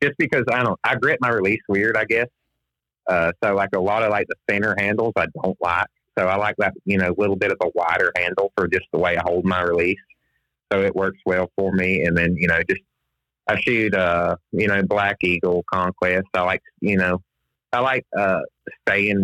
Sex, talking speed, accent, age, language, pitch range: male, 225 wpm, American, 30-49, English, 85-95 Hz